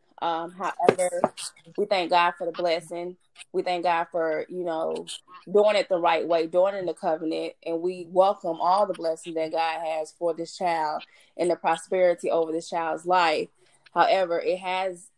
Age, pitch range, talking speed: 20-39, 170-200 Hz, 180 wpm